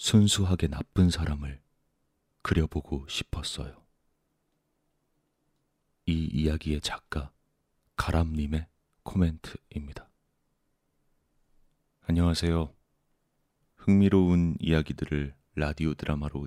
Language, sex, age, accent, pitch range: Korean, male, 30-49, native, 75-85 Hz